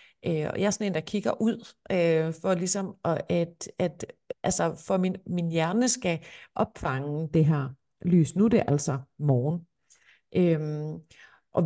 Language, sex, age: Danish, female, 50-69